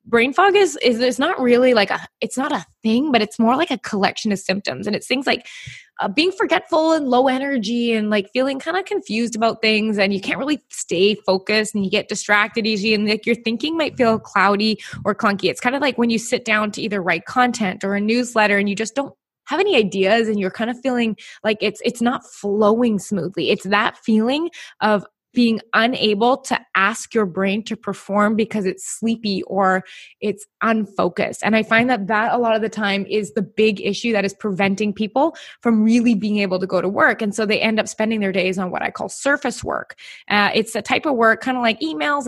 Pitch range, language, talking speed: 205-240 Hz, English, 225 wpm